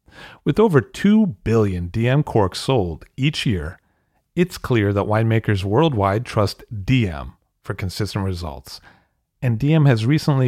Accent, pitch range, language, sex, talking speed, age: American, 100-140 Hz, English, male, 130 wpm, 40-59